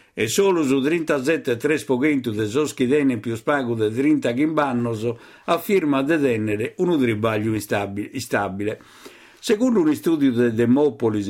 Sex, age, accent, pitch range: male, 50-69, native, 115-145 Hz